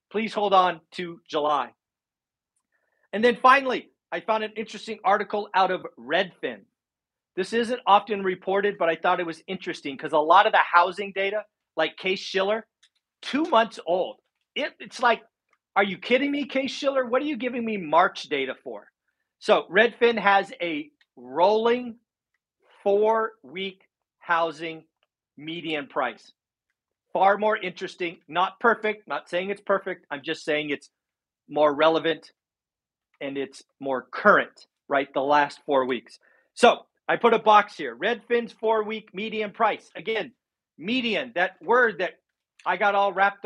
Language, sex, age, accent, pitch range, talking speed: English, male, 40-59, American, 165-220 Hz, 150 wpm